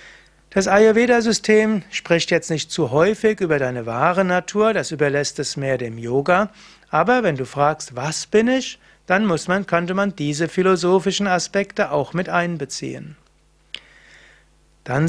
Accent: German